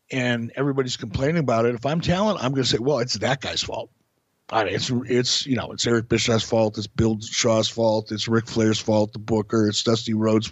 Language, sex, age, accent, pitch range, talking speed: English, male, 50-69, American, 115-145 Hz, 225 wpm